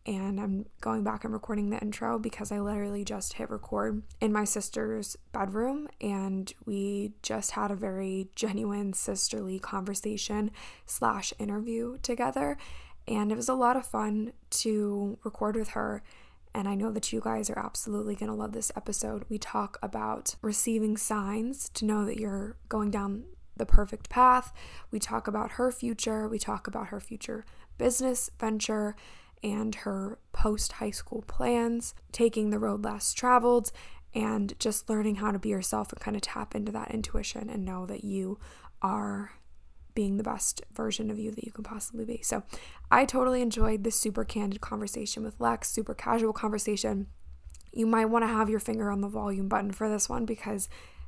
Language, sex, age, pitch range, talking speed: English, female, 10-29, 200-225 Hz, 170 wpm